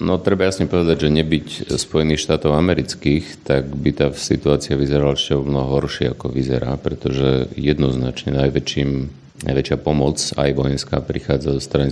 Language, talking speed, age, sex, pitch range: Slovak, 150 wpm, 40-59, male, 70-75 Hz